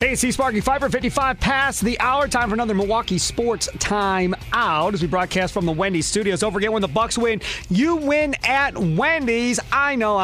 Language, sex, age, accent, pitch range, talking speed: English, male, 30-49, American, 160-210 Hz, 200 wpm